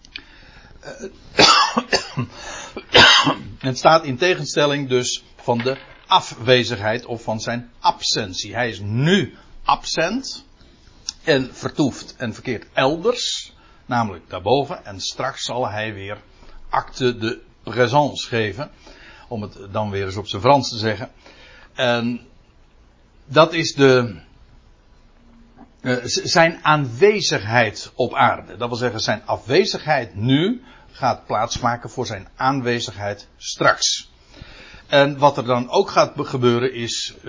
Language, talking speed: Dutch, 115 wpm